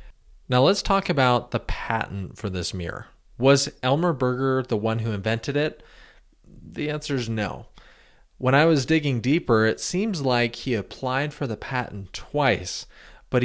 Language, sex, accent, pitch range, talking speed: English, male, American, 100-135 Hz, 160 wpm